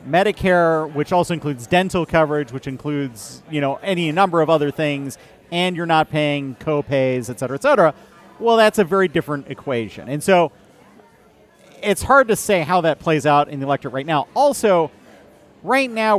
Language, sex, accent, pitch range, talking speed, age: English, male, American, 140-190 Hz, 180 wpm, 40-59